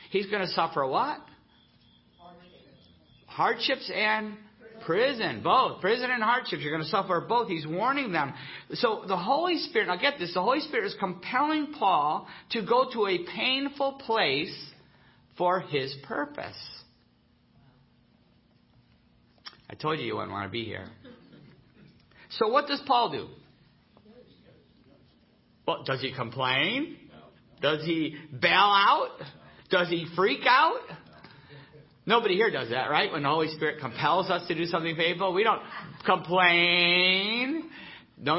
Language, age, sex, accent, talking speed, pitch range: English, 50-69, male, American, 135 wpm, 145-220 Hz